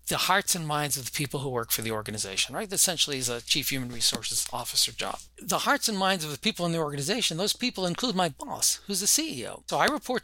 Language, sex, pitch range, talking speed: English, male, 140-195 Hz, 250 wpm